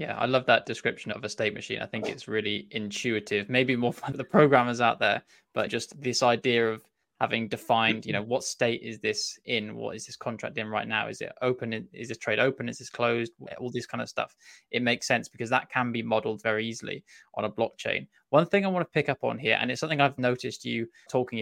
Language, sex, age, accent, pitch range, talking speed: English, male, 10-29, British, 115-130 Hz, 240 wpm